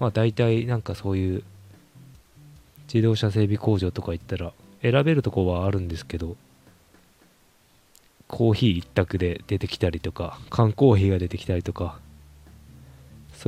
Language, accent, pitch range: Japanese, native, 90-115 Hz